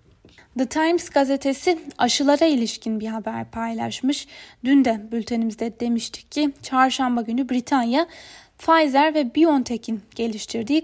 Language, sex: Turkish, female